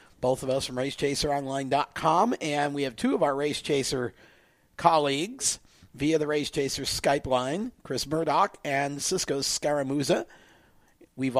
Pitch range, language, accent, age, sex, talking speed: 130-150 Hz, English, American, 50-69, male, 135 wpm